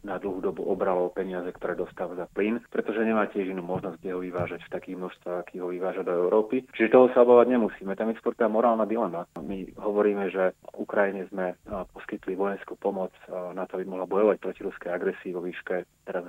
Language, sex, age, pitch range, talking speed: Slovak, male, 30-49, 90-105 Hz, 200 wpm